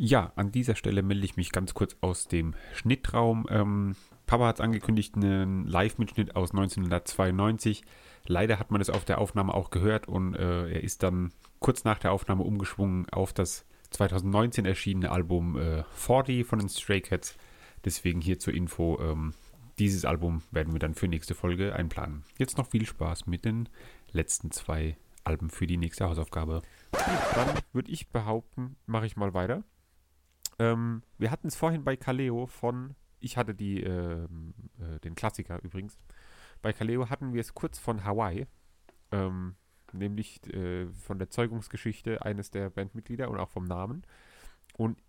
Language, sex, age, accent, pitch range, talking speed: German, male, 30-49, German, 90-115 Hz, 160 wpm